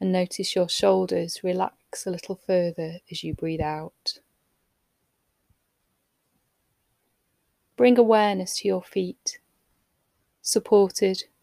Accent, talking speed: British, 95 wpm